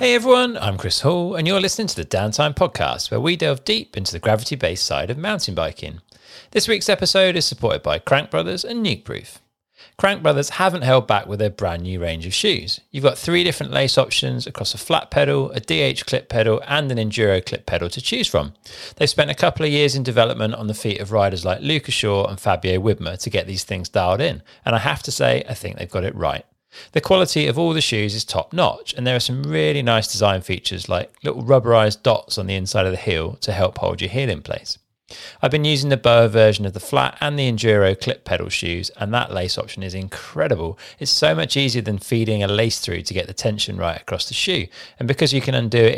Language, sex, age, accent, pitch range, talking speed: English, male, 40-59, British, 100-140 Hz, 235 wpm